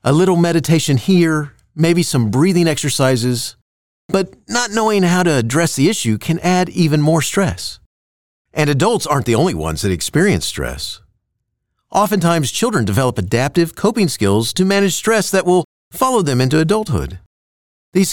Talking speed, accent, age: 150 wpm, American, 40-59